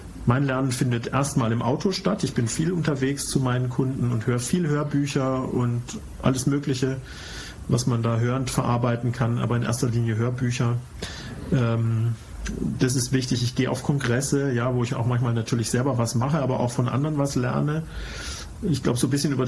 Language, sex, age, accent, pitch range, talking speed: English, male, 40-59, German, 120-140 Hz, 185 wpm